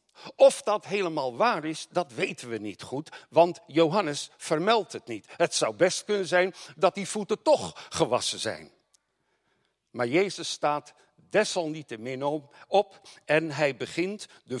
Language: Dutch